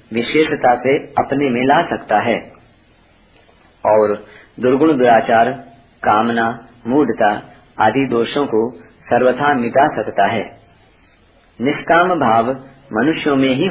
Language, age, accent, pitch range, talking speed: Hindi, 50-69, native, 110-145 Hz, 105 wpm